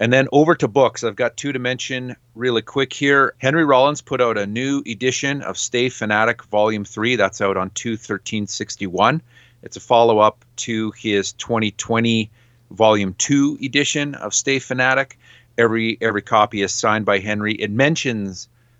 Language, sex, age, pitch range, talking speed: English, male, 30-49, 100-125 Hz, 160 wpm